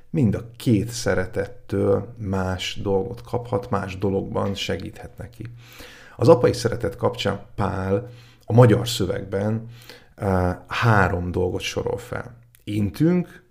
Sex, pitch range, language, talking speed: male, 95-115 Hz, Hungarian, 105 wpm